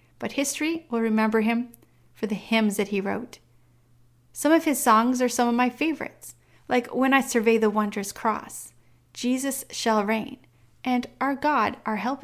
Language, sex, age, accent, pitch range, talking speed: English, female, 30-49, American, 210-265 Hz, 170 wpm